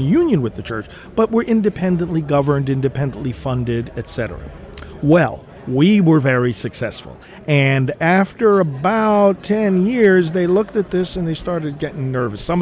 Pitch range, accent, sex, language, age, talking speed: 130-190 Hz, American, male, English, 50-69, 145 wpm